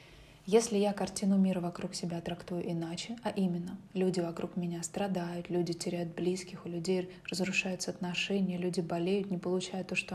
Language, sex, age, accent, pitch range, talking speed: Russian, female, 20-39, native, 175-190 Hz, 160 wpm